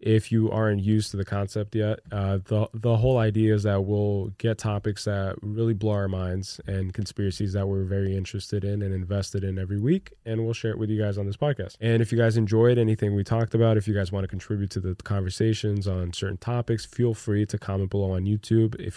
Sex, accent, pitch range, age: male, American, 95-110 Hz, 20-39